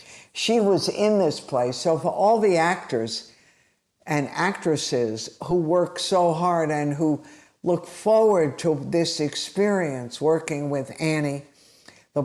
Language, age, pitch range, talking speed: English, 60-79, 140-185 Hz, 130 wpm